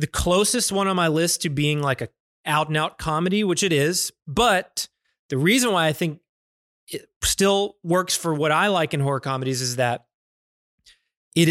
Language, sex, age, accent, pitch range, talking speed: English, male, 30-49, American, 145-185 Hz, 175 wpm